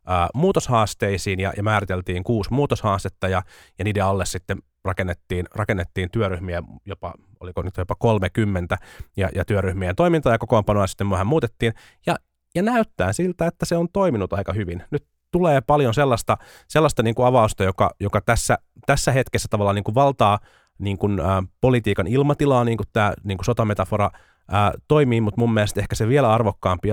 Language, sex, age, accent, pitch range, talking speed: Finnish, male, 30-49, native, 95-120 Hz, 165 wpm